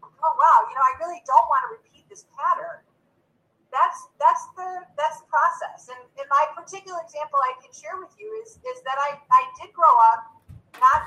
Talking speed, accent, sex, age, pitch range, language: 200 wpm, American, female, 30-49, 260-365 Hz, English